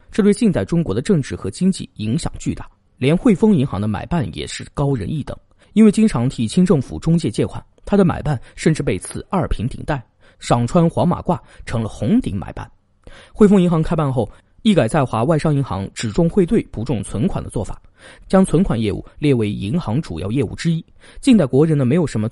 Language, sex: Chinese, male